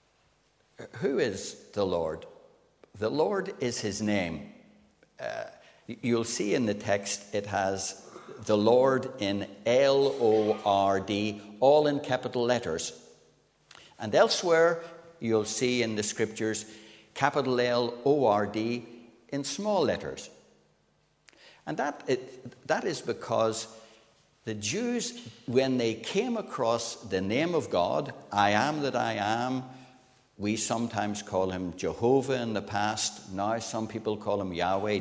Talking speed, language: 125 wpm, English